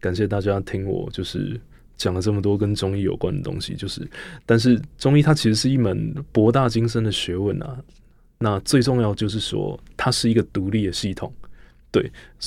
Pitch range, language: 100-120 Hz, Chinese